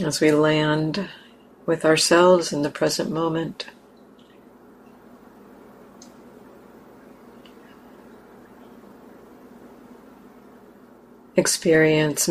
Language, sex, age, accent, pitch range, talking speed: English, female, 50-69, American, 155-200 Hz, 50 wpm